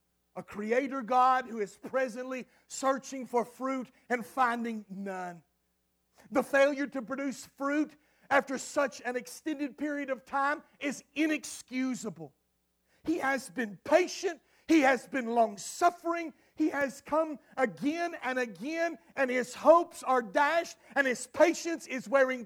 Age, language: 50-69, English